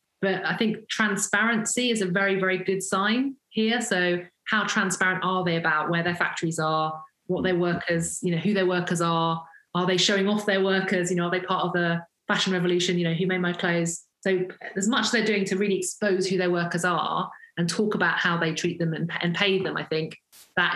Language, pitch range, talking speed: English, 170-195 Hz, 225 wpm